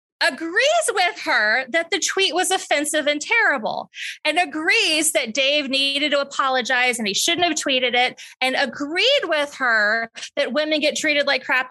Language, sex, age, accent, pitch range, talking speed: English, female, 20-39, American, 255-365 Hz, 170 wpm